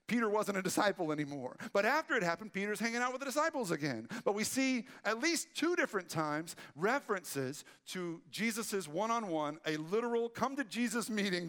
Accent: American